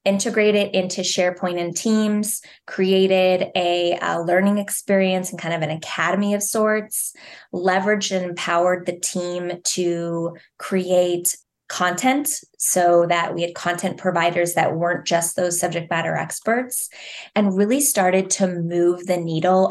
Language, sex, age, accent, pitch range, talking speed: English, female, 20-39, American, 170-195 Hz, 135 wpm